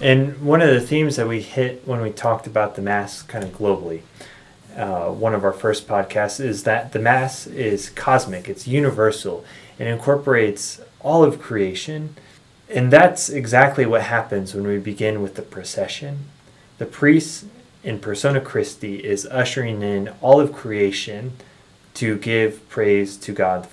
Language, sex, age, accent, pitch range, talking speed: English, male, 20-39, American, 100-130 Hz, 165 wpm